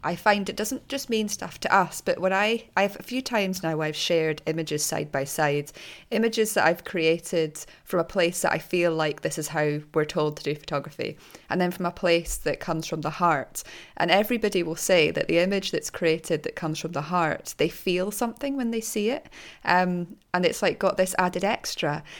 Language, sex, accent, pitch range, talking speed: English, female, British, 160-195 Hz, 220 wpm